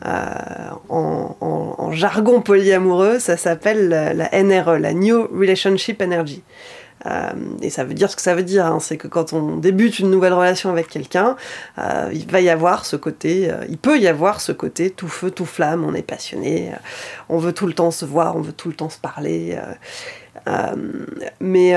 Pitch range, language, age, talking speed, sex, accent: 170-210 Hz, French, 20-39, 205 wpm, female, French